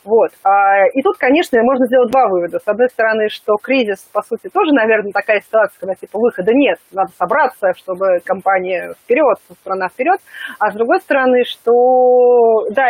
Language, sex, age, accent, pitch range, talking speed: Russian, female, 30-49, native, 190-255 Hz, 165 wpm